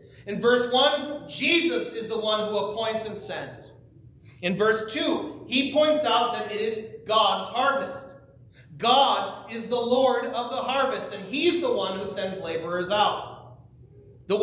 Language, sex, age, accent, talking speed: English, male, 30-49, American, 160 wpm